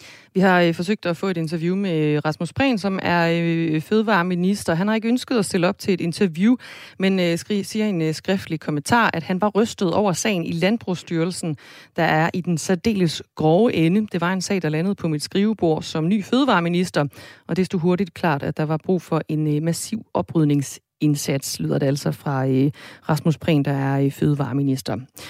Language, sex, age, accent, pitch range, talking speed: Danish, female, 30-49, native, 155-200 Hz, 185 wpm